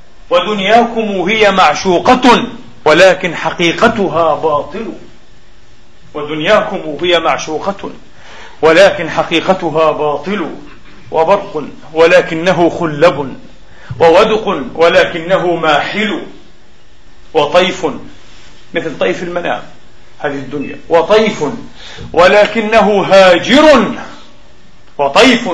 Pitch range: 165-210 Hz